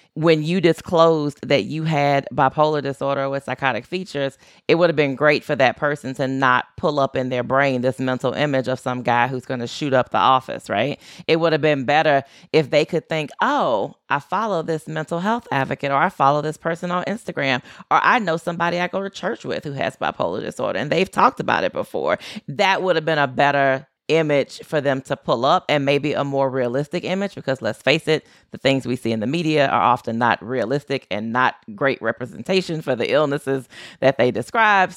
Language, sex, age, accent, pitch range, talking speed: English, female, 30-49, American, 130-160 Hz, 215 wpm